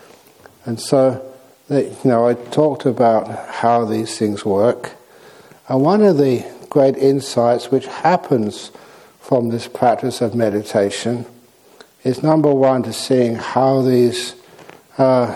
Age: 60-79